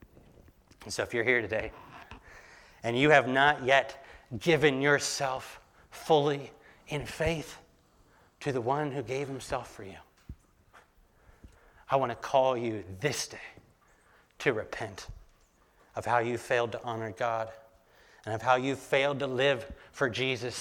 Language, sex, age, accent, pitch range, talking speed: English, male, 30-49, American, 125-165 Hz, 145 wpm